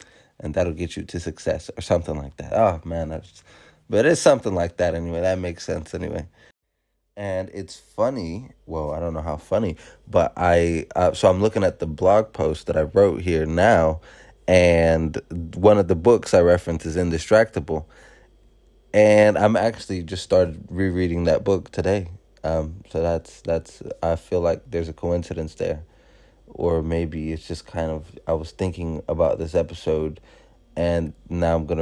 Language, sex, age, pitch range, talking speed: English, male, 20-39, 80-95 Hz, 175 wpm